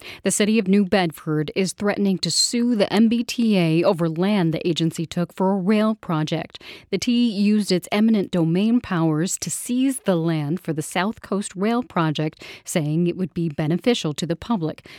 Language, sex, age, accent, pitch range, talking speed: English, female, 40-59, American, 165-210 Hz, 180 wpm